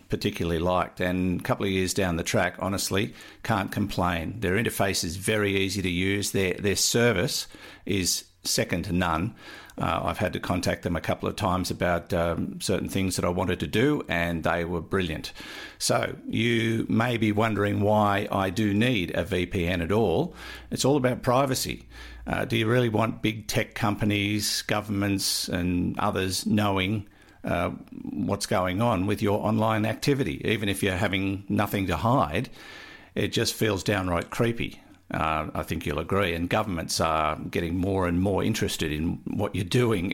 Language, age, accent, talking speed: English, 50-69, Australian, 175 wpm